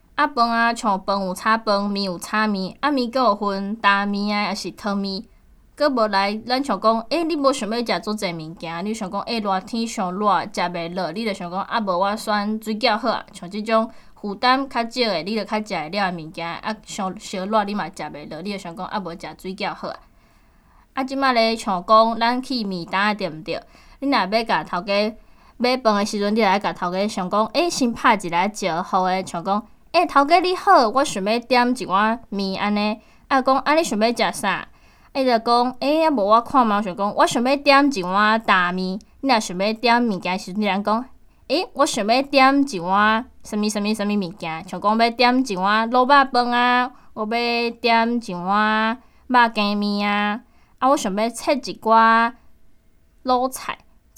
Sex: female